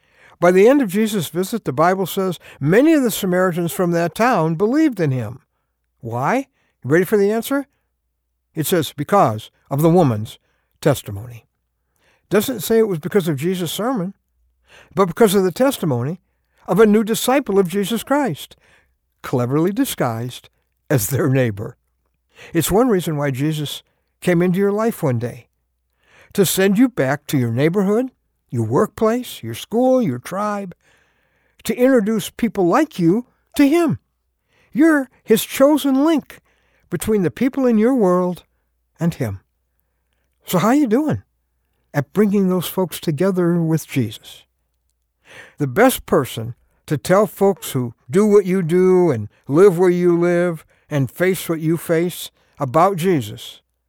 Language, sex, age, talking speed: English, male, 60-79, 150 wpm